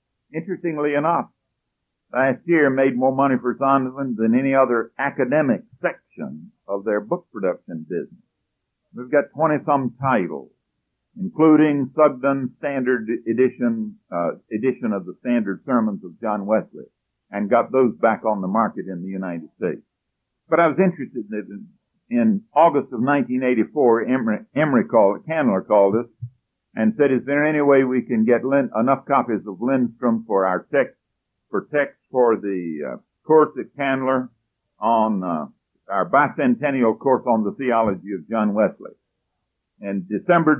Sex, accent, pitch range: male, American, 105-145 Hz